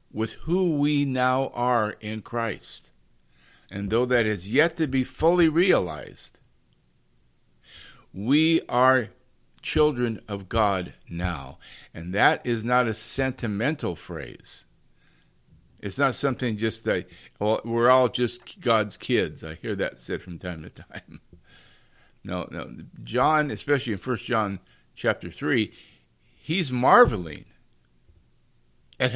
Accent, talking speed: American, 125 wpm